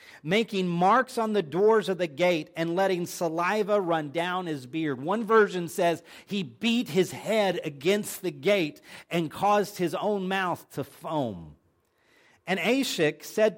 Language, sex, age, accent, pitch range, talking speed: English, male, 40-59, American, 160-235 Hz, 155 wpm